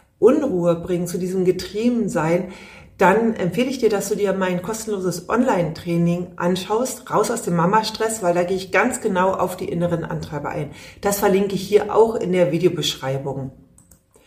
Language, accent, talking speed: German, German, 170 wpm